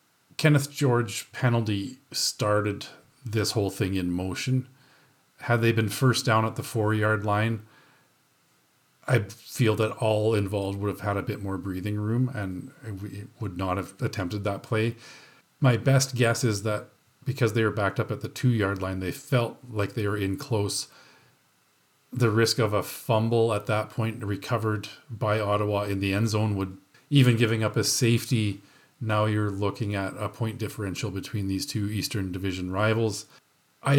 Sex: male